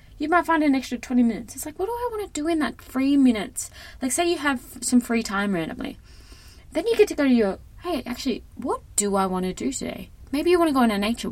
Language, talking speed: English, 270 wpm